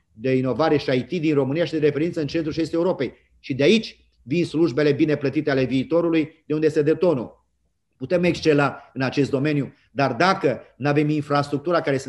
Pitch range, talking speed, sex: 140-170 Hz, 195 wpm, male